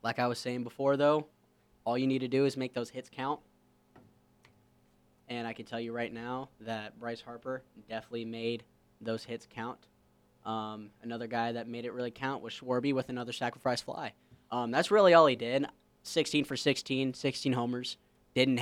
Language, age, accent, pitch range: English, 10-29, American, 110-125 Hz